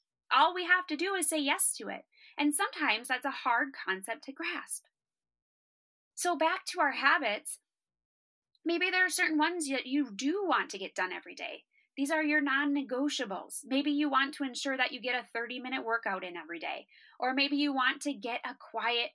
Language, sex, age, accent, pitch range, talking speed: English, female, 20-39, American, 220-305 Hz, 195 wpm